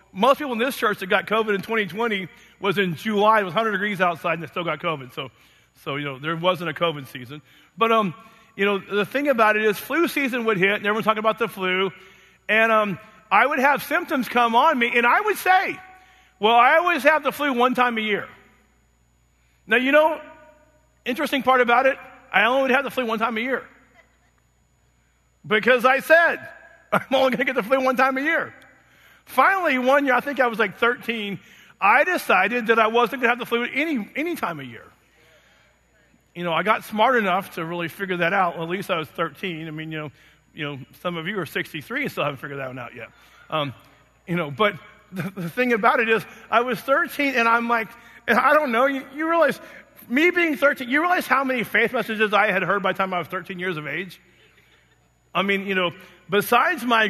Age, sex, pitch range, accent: 40-59, male, 175-255 Hz, American